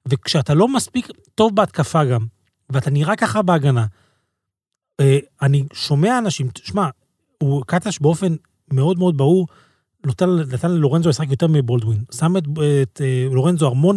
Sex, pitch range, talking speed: male, 145-210 Hz, 130 wpm